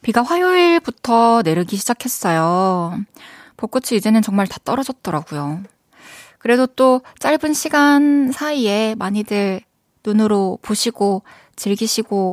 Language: Korean